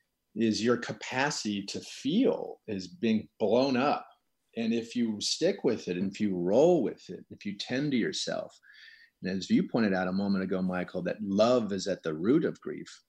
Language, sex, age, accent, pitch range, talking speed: English, male, 40-59, American, 100-130 Hz, 195 wpm